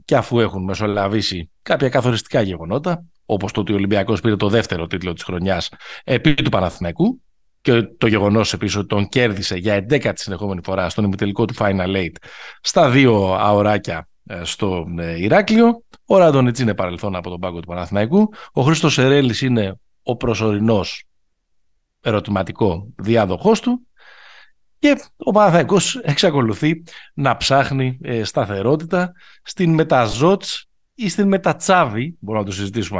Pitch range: 100-155 Hz